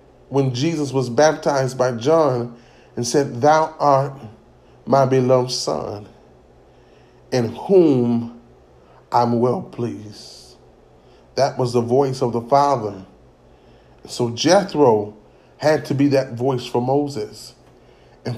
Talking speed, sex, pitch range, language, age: 115 wpm, male, 125-165 Hz, English, 30-49